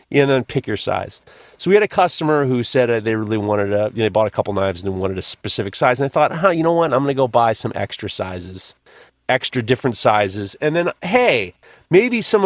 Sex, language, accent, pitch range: male, English, American, 120-195 Hz